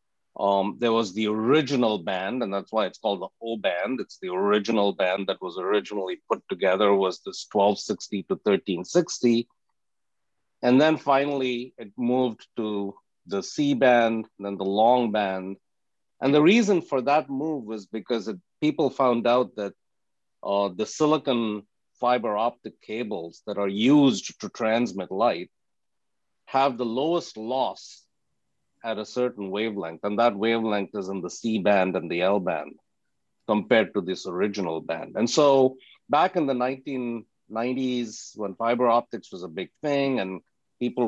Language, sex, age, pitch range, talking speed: English, male, 50-69, 105-135 Hz, 150 wpm